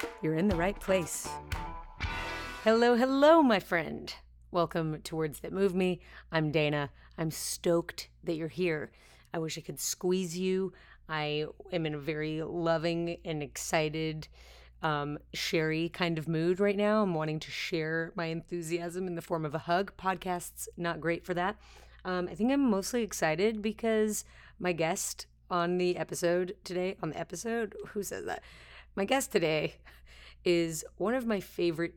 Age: 30-49